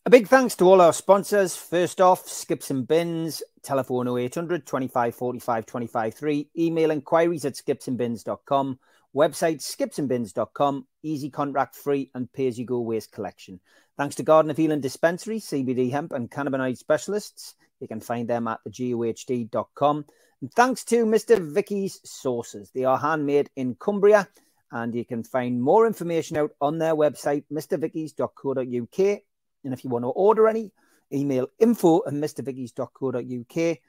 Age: 40-59